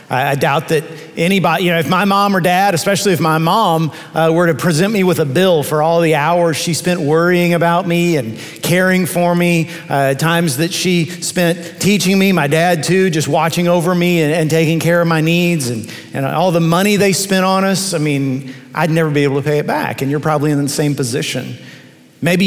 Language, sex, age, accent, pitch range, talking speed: English, male, 40-59, American, 155-180 Hz, 225 wpm